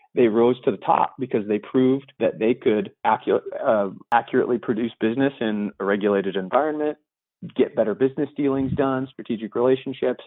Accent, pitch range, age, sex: American, 110-135 Hz, 40-59, male